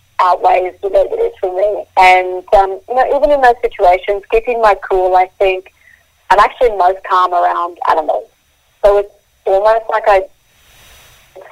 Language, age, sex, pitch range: English, 30-49, female, 180-215 Hz